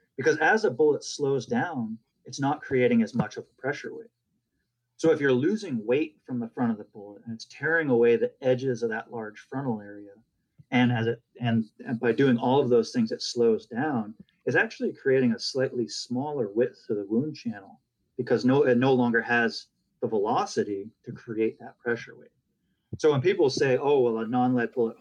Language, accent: English, American